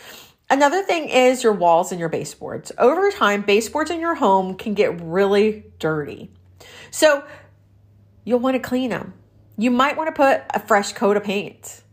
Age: 40-59